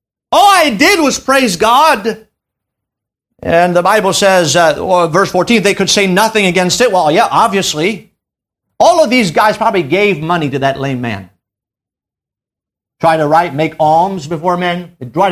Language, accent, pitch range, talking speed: English, American, 170-235 Hz, 160 wpm